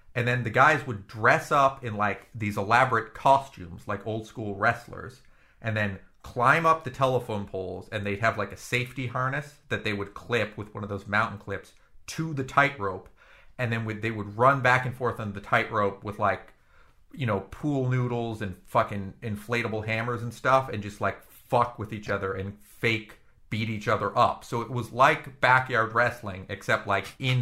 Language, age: English, 40-59